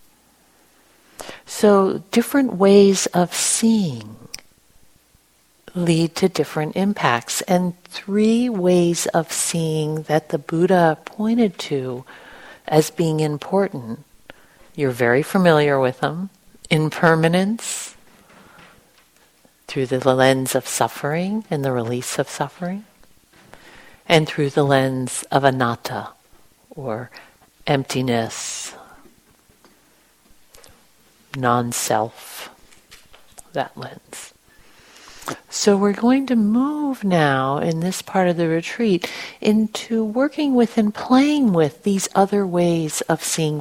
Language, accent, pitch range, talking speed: English, American, 150-210 Hz, 100 wpm